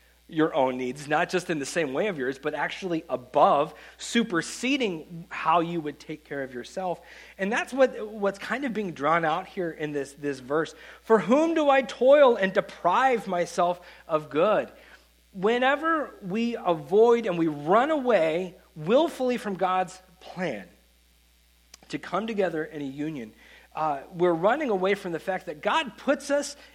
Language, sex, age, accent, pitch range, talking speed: English, male, 40-59, American, 165-245 Hz, 165 wpm